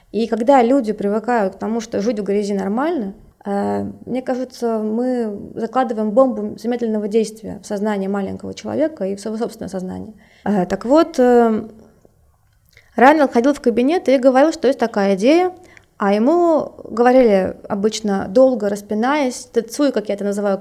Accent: native